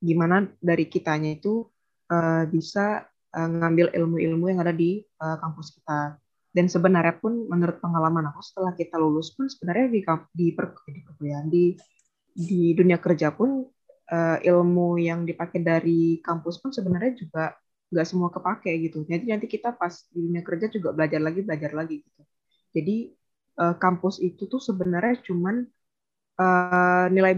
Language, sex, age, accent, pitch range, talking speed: Indonesian, female, 20-39, native, 160-190 Hz, 155 wpm